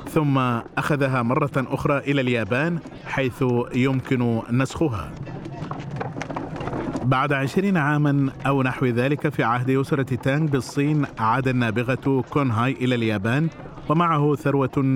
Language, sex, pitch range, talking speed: Arabic, male, 125-150 Hz, 110 wpm